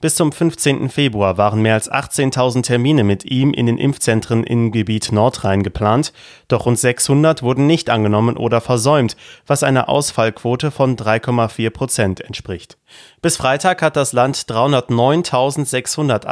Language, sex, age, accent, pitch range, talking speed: German, male, 30-49, German, 115-145 Hz, 145 wpm